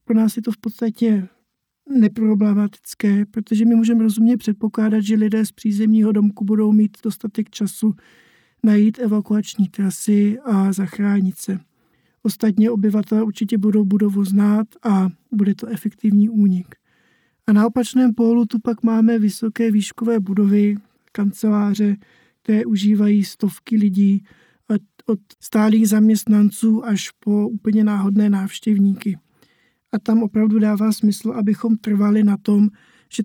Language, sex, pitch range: Czech, male, 205-220 Hz